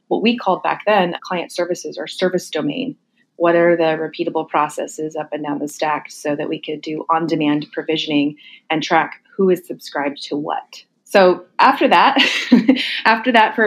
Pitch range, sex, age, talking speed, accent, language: 165-195 Hz, female, 30-49, 175 wpm, American, English